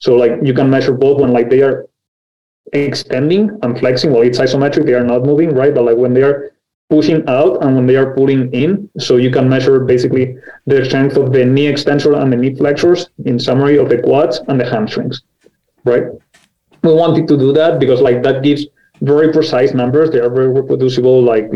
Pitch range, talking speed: 125-145 Hz, 210 wpm